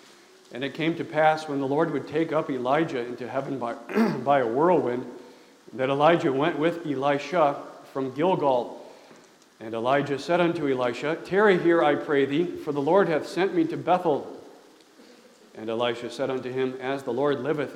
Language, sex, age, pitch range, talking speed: English, male, 40-59, 130-160 Hz, 175 wpm